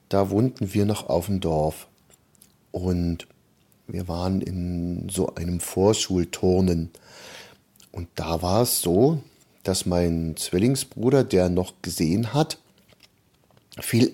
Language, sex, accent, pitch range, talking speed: German, male, German, 95-120 Hz, 115 wpm